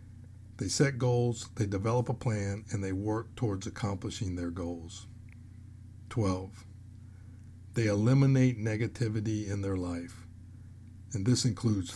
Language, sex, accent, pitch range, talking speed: English, male, American, 100-115 Hz, 120 wpm